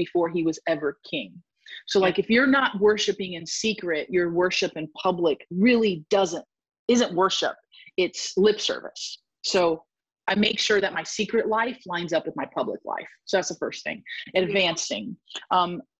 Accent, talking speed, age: American, 170 wpm, 30-49